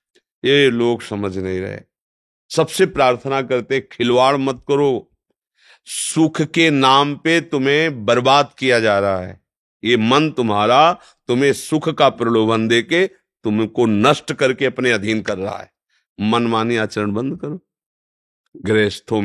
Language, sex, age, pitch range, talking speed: Hindi, male, 50-69, 105-135 Hz, 135 wpm